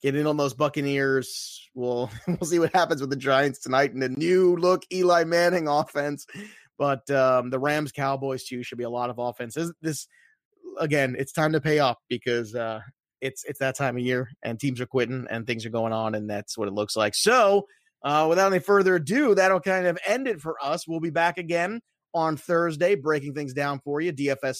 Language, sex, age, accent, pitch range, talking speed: English, male, 30-49, American, 135-185 Hz, 210 wpm